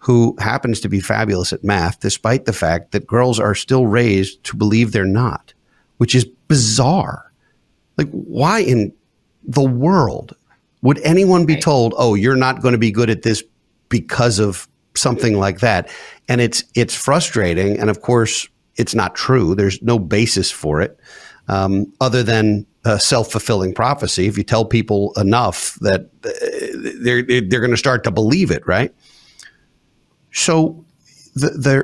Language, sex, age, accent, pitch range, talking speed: English, male, 50-69, American, 105-140 Hz, 155 wpm